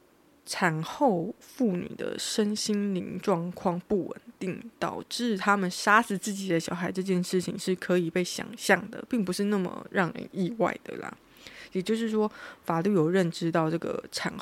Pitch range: 175-210 Hz